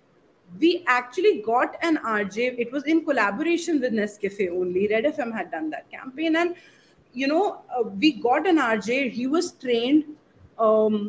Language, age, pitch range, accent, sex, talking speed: English, 30-49, 220-300 Hz, Indian, female, 160 wpm